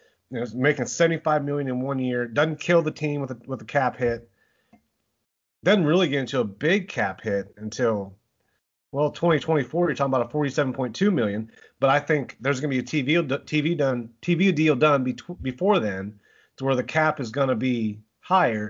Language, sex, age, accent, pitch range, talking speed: English, male, 30-49, American, 110-140 Hz, 210 wpm